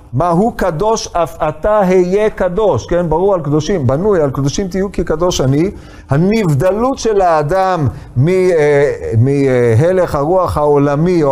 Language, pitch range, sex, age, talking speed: Hebrew, 130-200 Hz, male, 50-69, 135 wpm